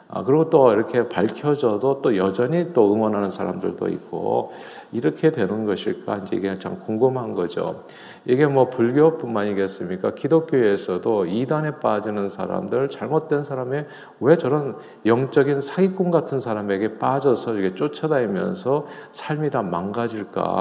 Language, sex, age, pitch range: Korean, male, 40-59, 105-140 Hz